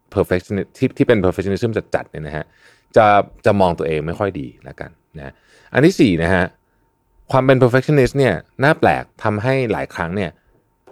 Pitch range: 90-135 Hz